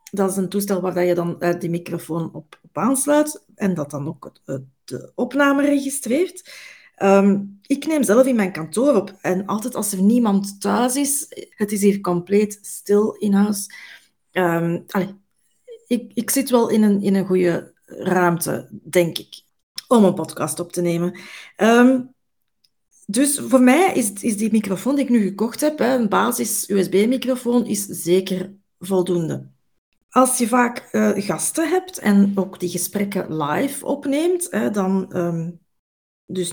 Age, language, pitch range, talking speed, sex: 40-59, Dutch, 190-245 Hz, 150 wpm, female